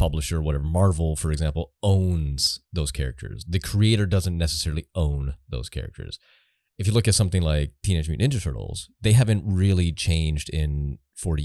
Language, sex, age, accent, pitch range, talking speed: English, male, 30-49, American, 75-100 Hz, 160 wpm